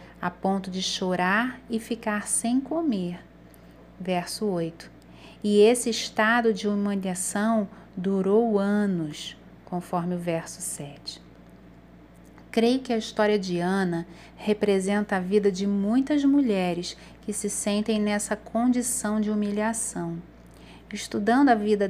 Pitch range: 185-225 Hz